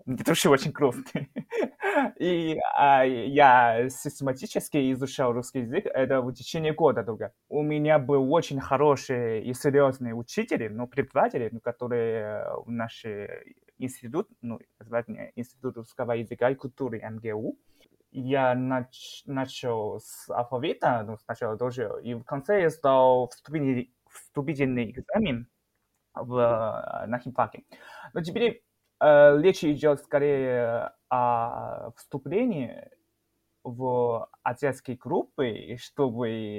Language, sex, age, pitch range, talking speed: Russian, male, 20-39, 120-145 Hz, 115 wpm